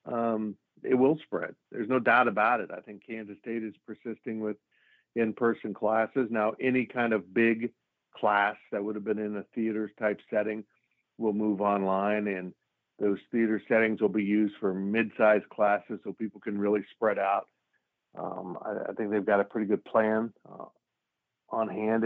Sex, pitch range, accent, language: male, 105-115 Hz, American, English